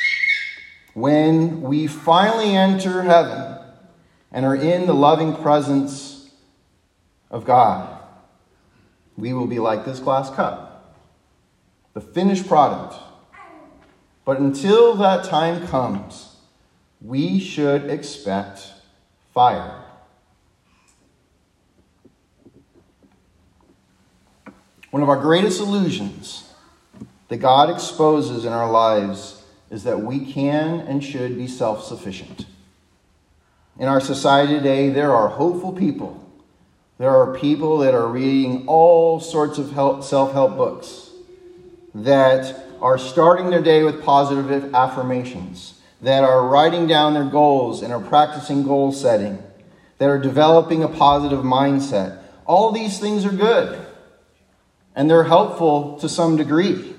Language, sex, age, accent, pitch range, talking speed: English, male, 40-59, American, 120-160 Hz, 110 wpm